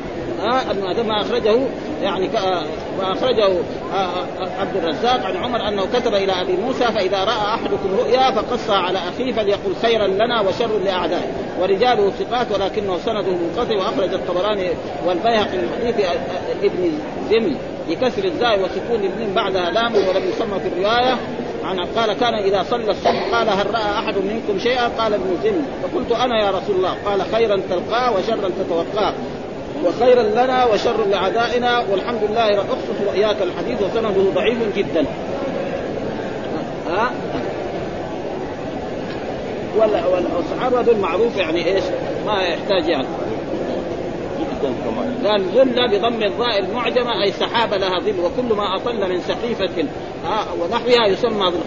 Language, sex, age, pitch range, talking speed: Arabic, male, 40-59, 195-245 Hz, 130 wpm